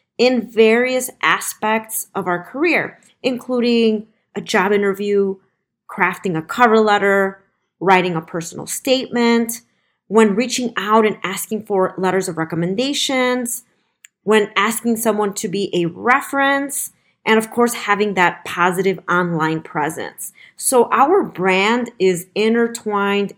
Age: 30-49